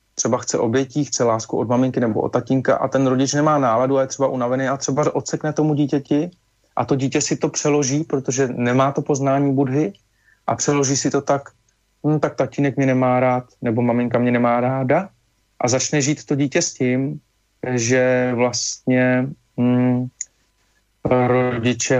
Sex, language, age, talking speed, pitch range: male, Slovak, 30-49, 165 wpm, 110-135 Hz